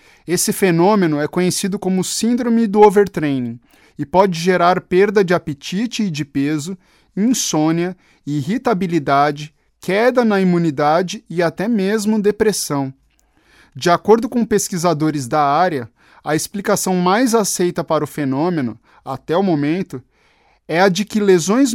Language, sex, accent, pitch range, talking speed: Portuguese, male, Brazilian, 155-200 Hz, 130 wpm